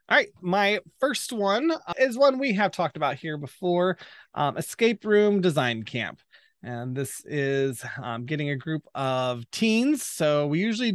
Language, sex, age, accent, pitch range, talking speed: English, male, 20-39, American, 145-180 Hz, 165 wpm